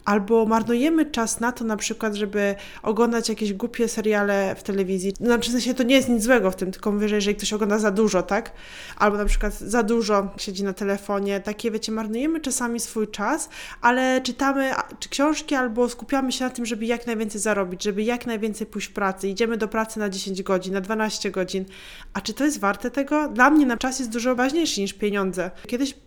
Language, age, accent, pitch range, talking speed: Polish, 20-39, native, 200-240 Hz, 205 wpm